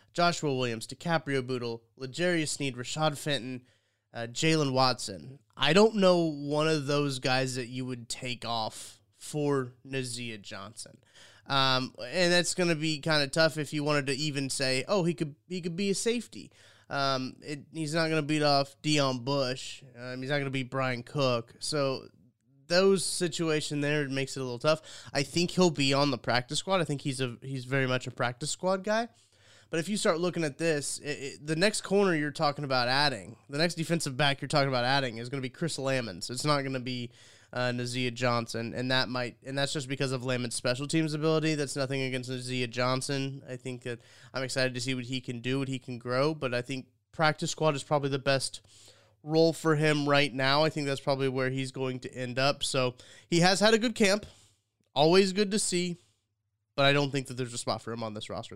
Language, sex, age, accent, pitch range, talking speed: English, male, 20-39, American, 125-160 Hz, 215 wpm